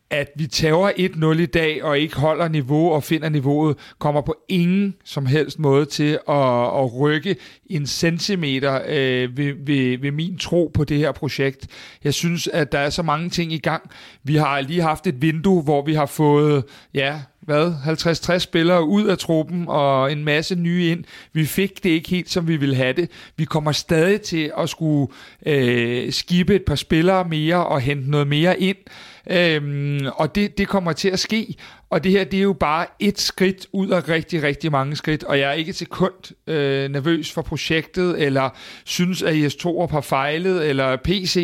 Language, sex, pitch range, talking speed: Danish, male, 145-175 Hz, 195 wpm